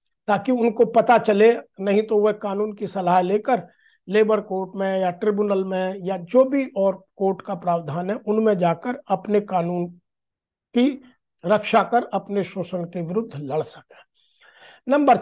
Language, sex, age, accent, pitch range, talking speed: Hindi, male, 50-69, native, 185-225 Hz, 155 wpm